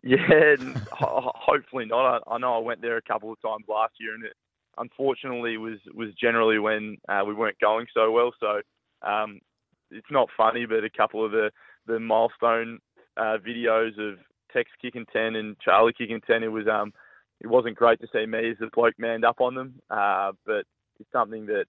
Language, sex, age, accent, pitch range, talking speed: English, male, 20-39, Australian, 105-115 Hz, 195 wpm